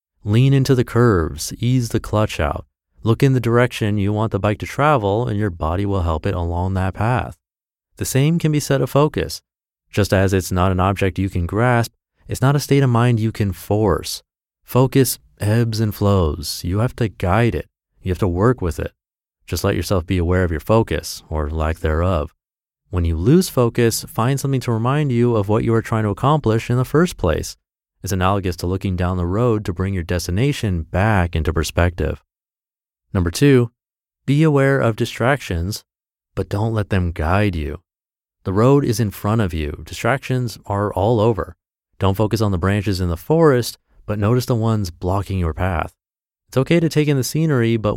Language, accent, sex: English, American, male